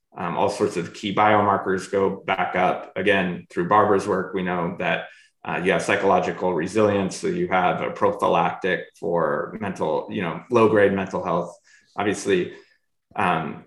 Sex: male